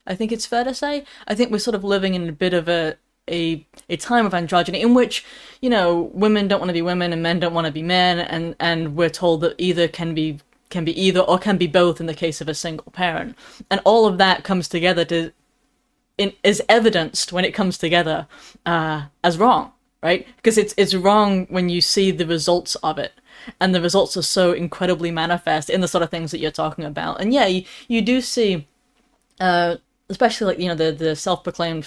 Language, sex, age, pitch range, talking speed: English, female, 10-29, 170-210 Hz, 225 wpm